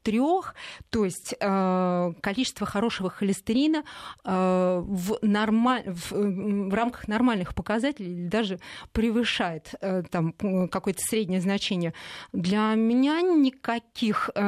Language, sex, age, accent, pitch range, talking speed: Russian, female, 20-39, native, 185-225 Hz, 85 wpm